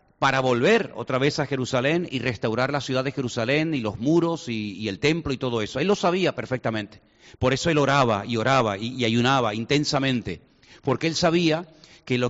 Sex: male